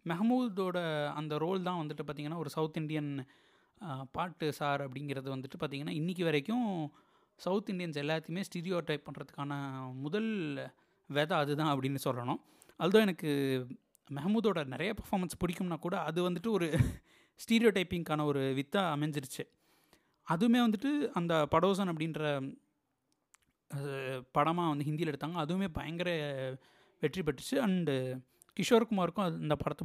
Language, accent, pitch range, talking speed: Tamil, native, 150-195 Hz, 125 wpm